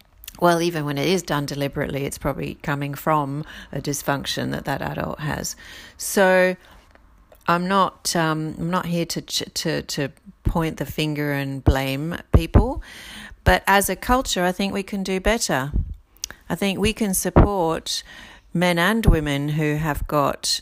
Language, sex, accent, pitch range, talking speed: English, female, Australian, 145-185 Hz, 160 wpm